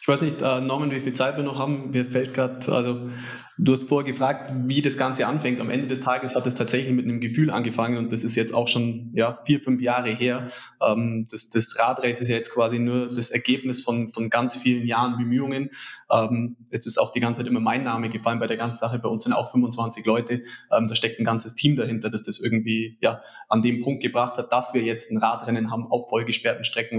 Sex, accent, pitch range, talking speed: male, German, 115-130 Hz, 235 wpm